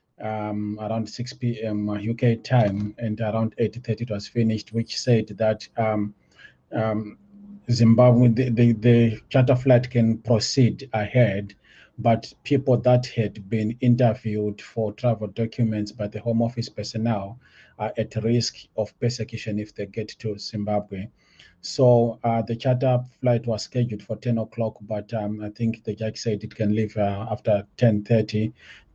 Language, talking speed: English, 150 wpm